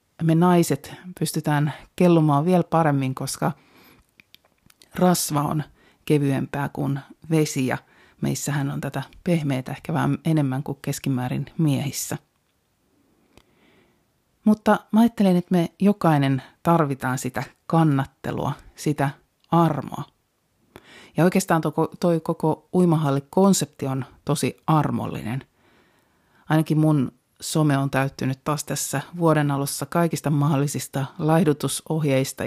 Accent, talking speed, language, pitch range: native, 100 wpm, Finnish, 135-160 Hz